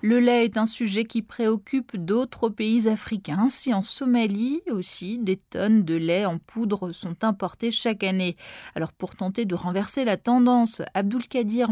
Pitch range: 185-240 Hz